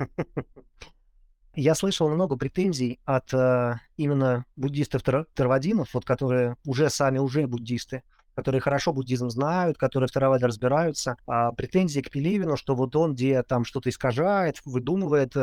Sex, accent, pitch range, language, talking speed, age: male, native, 130-155 Hz, Russian, 130 wpm, 20-39